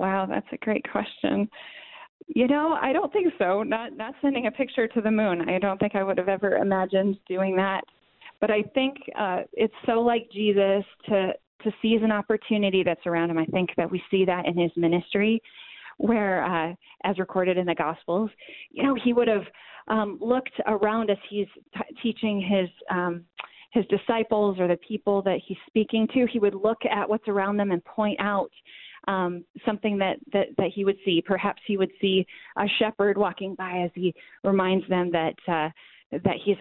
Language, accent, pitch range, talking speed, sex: English, American, 185-215 Hz, 190 wpm, female